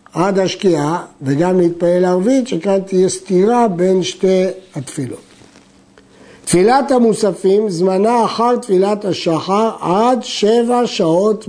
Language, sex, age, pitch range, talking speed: Hebrew, male, 60-79, 165-220 Hz, 105 wpm